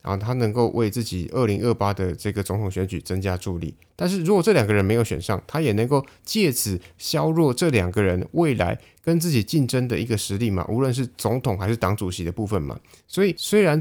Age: 20-39